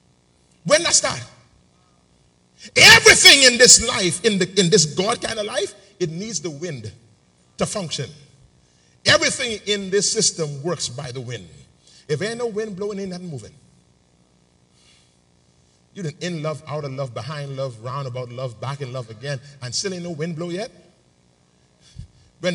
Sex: male